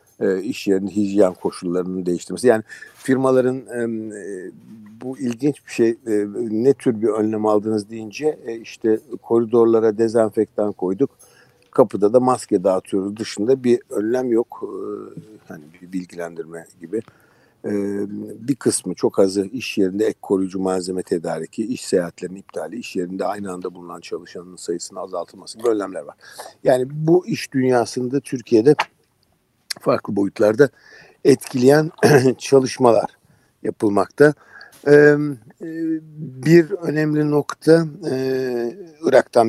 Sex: male